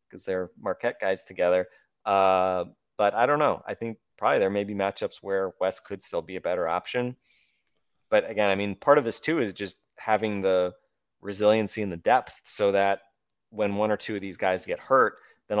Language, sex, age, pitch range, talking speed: English, male, 20-39, 95-110 Hz, 205 wpm